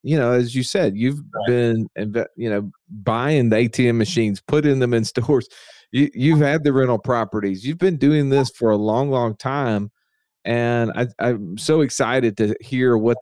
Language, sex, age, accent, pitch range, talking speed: English, male, 40-59, American, 110-130 Hz, 175 wpm